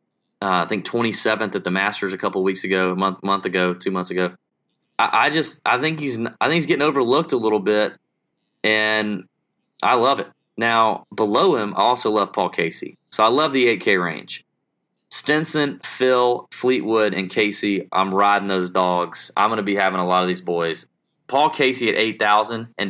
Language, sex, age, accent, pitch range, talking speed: English, male, 20-39, American, 95-125 Hz, 200 wpm